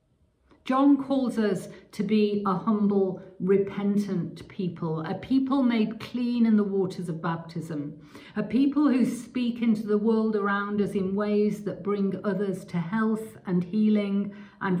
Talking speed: 150 wpm